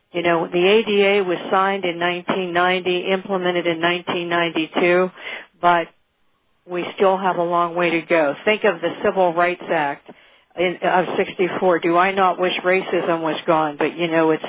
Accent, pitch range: American, 175-220 Hz